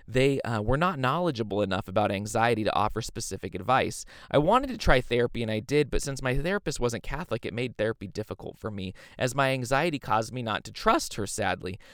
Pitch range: 105-140 Hz